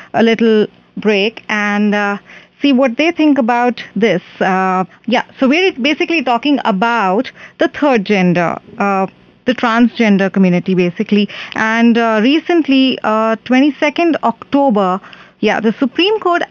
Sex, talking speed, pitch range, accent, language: female, 130 wpm, 210-270 Hz, Indian, English